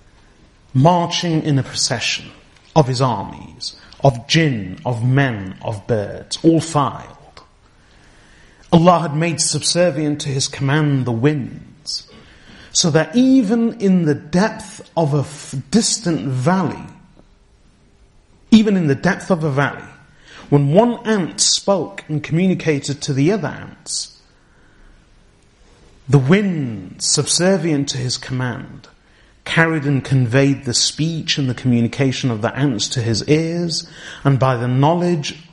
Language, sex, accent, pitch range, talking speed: English, male, British, 125-165 Hz, 125 wpm